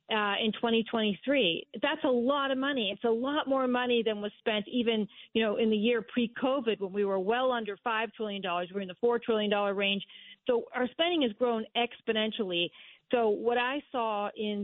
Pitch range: 205-245 Hz